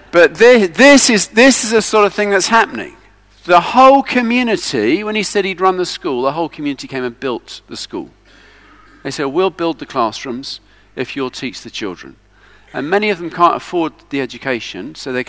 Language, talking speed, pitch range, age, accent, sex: English, 200 wpm, 110-170 Hz, 50-69, British, male